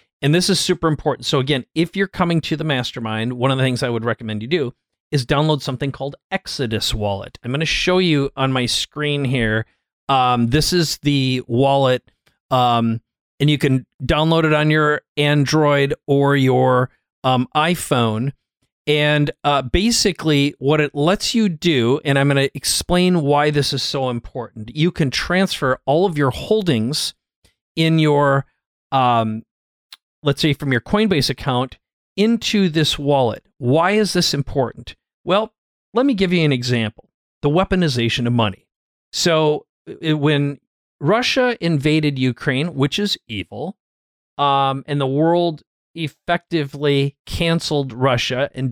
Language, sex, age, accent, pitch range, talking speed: English, male, 40-59, American, 130-160 Hz, 155 wpm